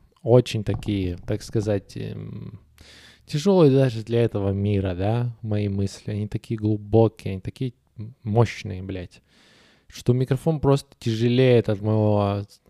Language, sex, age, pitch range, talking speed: Russian, male, 20-39, 105-125 Hz, 125 wpm